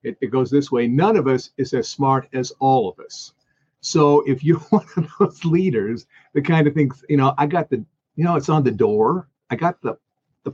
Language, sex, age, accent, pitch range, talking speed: English, male, 50-69, American, 130-165 Hz, 235 wpm